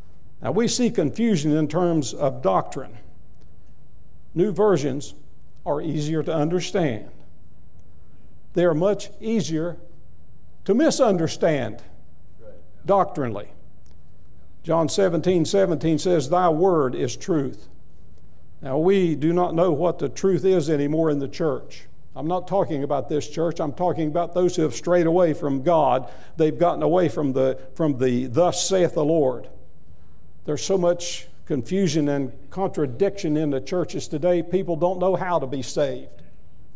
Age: 60-79